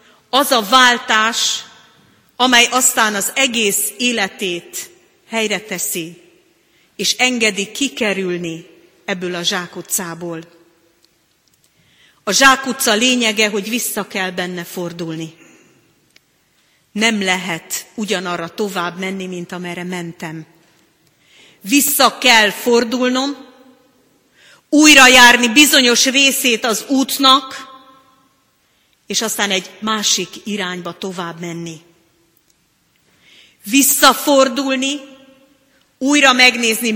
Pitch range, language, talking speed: 185-260 Hz, Hungarian, 85 wpm